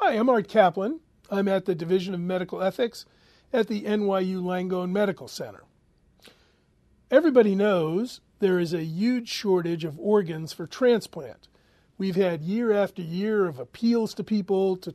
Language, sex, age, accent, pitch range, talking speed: English, male, 40-59, American, 180-210 Hz, 155 wpm